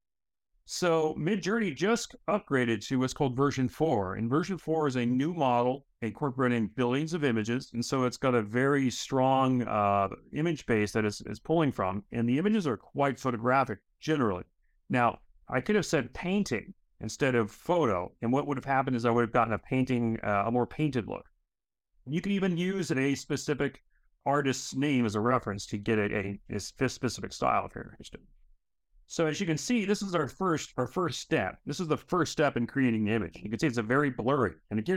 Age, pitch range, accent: 40-59, 115-150 Hz, American